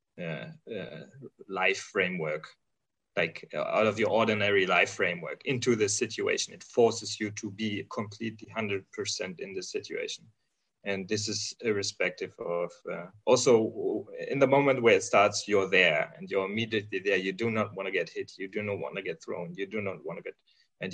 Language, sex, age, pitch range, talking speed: English, male, 30-49, 95-130 Hz, 185 wpm